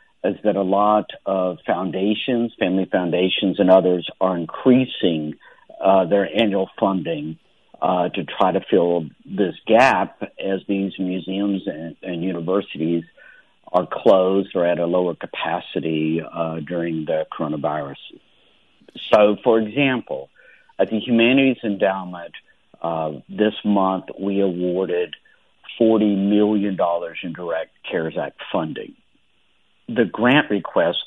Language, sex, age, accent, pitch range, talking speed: English, male, 50-69, American, 85-105 Hz, 120 wpm